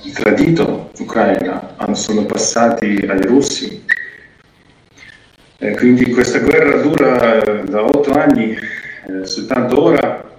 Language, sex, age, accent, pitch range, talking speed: Italian, male, 40-59, native, 100-125 Hz, 90 wpm